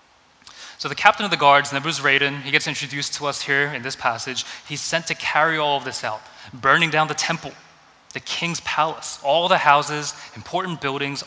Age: 20-39